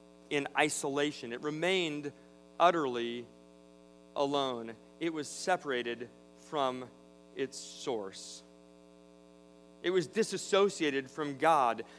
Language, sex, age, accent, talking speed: English, male, 40-59, American, 85 wpm